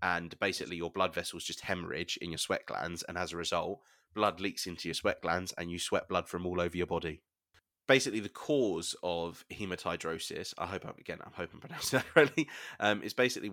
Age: 20-39